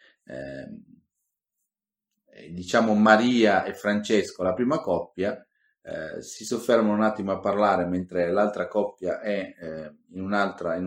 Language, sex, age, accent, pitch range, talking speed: Italian, male, 30-49, native, 90-125 Hz, 125 wpm